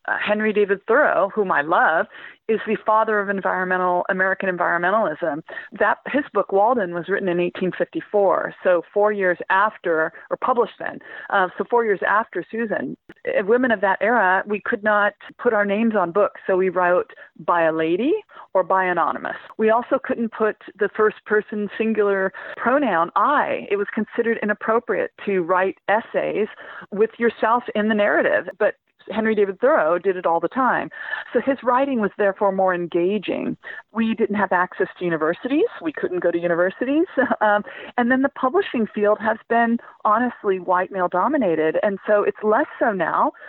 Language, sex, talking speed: English, female, 170 wpm